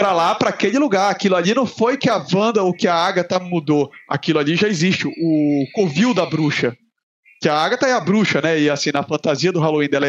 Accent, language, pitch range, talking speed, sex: Brazilian, Portuguese, 160-205 Hz, 230 wpm, male